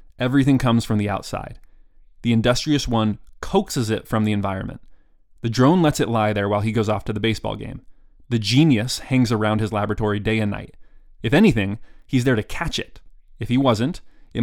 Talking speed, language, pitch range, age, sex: 195 wpm, English, 105-125 Hz, 20-39, male